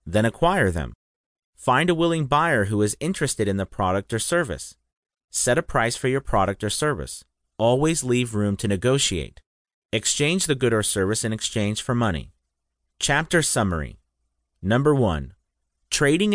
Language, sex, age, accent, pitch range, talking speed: English, male, 30-49, American, 100-145 Hz, 155 wpm